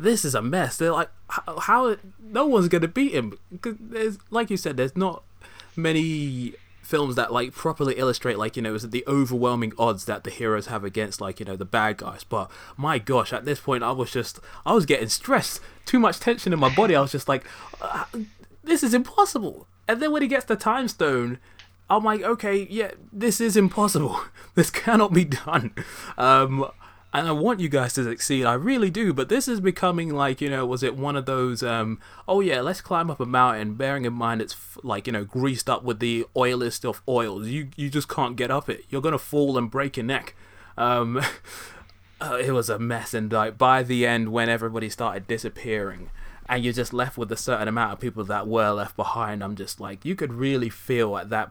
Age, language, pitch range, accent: 20-39, English, 110-160 Hz, British